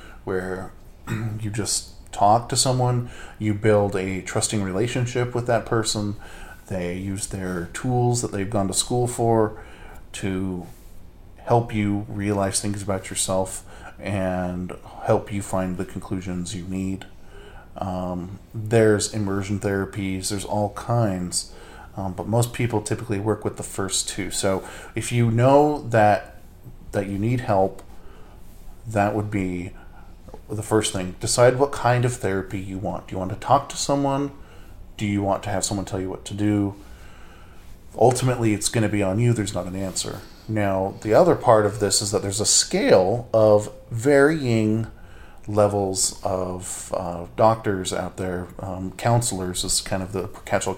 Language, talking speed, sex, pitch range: English, 155 wpm, male, 95-110 Hz